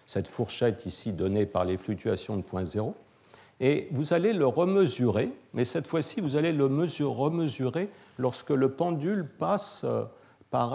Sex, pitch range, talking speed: male, 105-145 Hz, 155 wpm